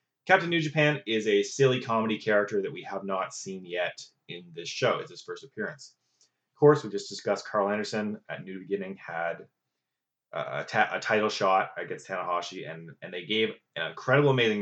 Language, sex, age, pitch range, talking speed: English, male, 20-39, 100-145 Hz, 185 wpm